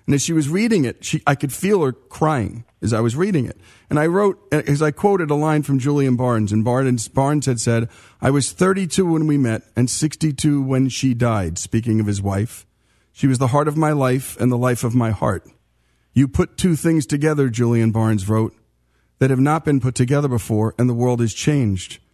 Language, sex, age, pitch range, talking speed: English, male, 50-69, 115-145 Hz, 220 wpm